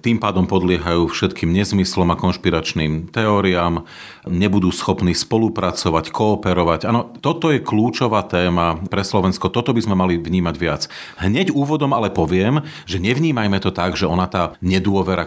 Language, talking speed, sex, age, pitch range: Slovak, 145 wpm, male, 40-59, 90-105 Hz